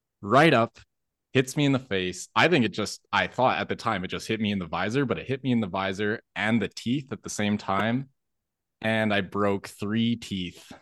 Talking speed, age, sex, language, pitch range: 235 wpm, 20-39, male, English, 95-110 Hz